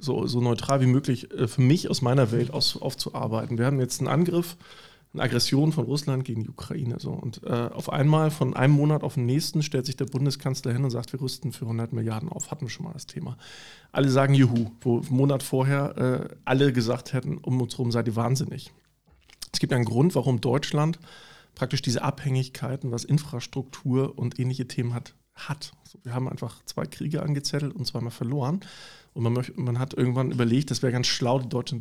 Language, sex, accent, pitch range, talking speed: German, male, German, 125-145 Hz, 200 wpm